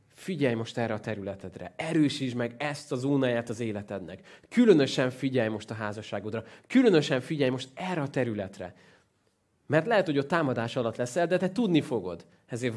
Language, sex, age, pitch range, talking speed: Hungarian, male, 20-39, 115-160 Hz, 165 wpm